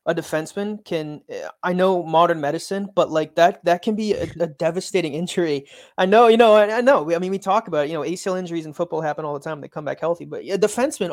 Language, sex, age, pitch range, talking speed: English, male, 20-39, 160-195 Hz, 250 wpm